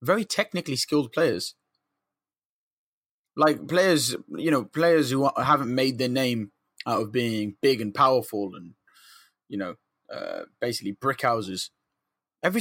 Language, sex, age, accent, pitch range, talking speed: English, male, 20-39, British, 115-145 Hz, 135 wpm